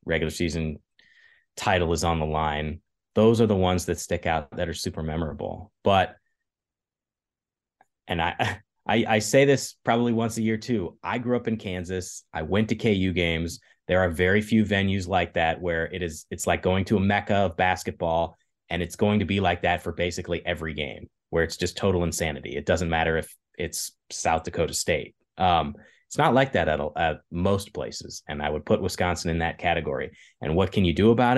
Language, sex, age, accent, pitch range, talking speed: English, male, 30-49, American, 85-110 Hz, 200 wpm